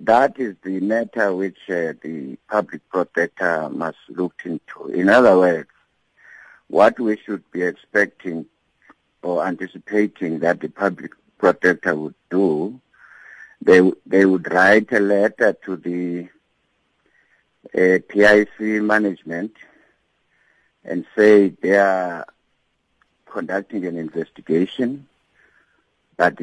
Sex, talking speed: male, 105 wpm